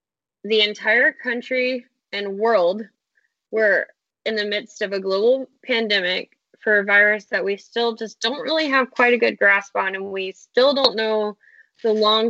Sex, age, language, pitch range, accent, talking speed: female, 10-29, English, 195-245 Hz, American, 170 wpm